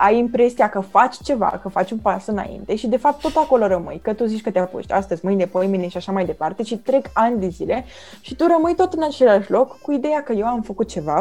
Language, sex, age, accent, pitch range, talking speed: Romanian, female, 20-39, native, 185-235 Hz, 255 wpm